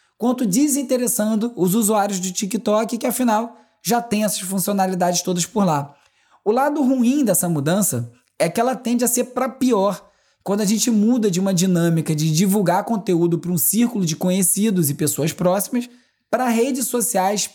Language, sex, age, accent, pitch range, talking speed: Portuguese, male, 20-39, Brazilian, 175-230 Hz, 170 wpm